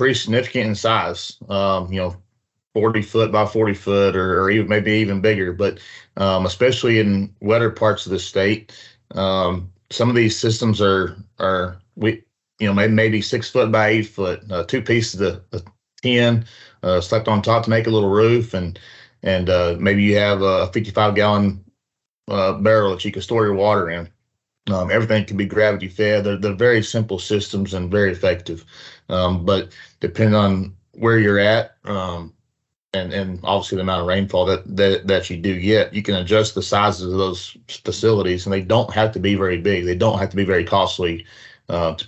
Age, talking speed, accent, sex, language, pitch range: 30-49, 195 wpm, American, male, English, 95-110 Hz